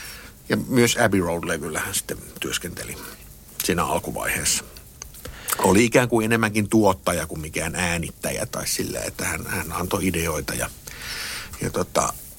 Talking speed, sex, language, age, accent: 130 wpm, male, Finnish, 60-79, native